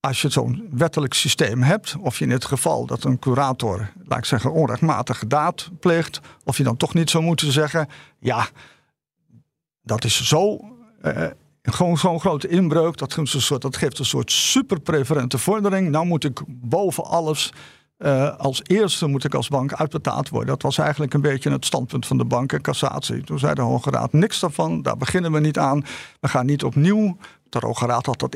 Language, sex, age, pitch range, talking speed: Dutch, male, 50-69, 135-170 Hz, 195 wpm